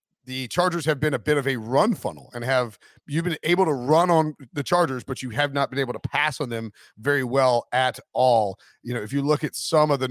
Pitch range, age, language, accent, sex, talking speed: 130-160 Hz, 40-59, English, American, male, 255 wpm